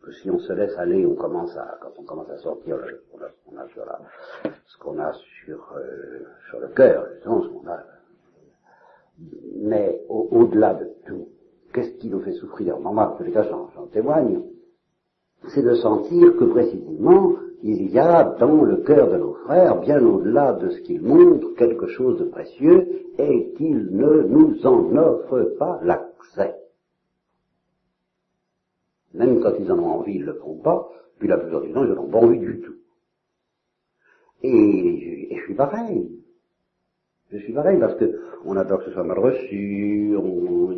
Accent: French